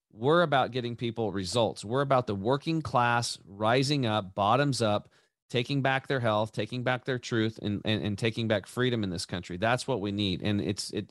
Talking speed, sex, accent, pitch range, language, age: 205 wpm, male, American, 110-135 Hz, English, 30-49